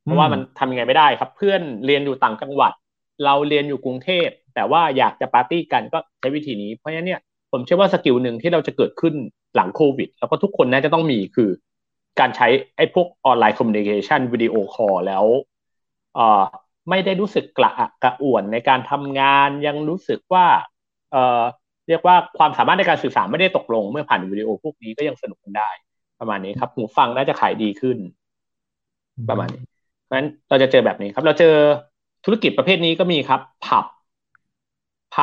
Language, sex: Thai, male